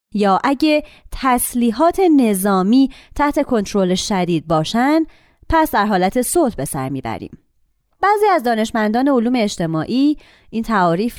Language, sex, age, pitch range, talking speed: Persian, female, 30-49, 185-265 Hz, 120 wpm